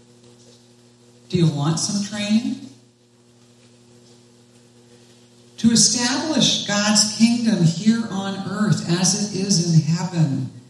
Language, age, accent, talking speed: English, 60-79, American, 95 wpm